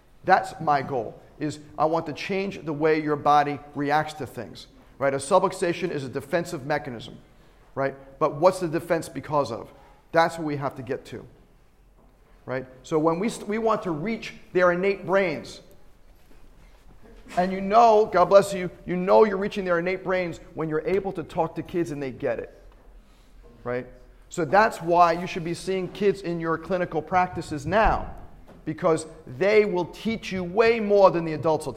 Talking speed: 185 wpm